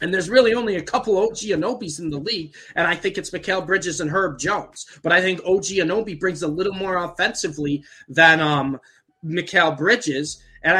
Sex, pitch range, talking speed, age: male, 145-190 Hz, 195 wpm, 20-39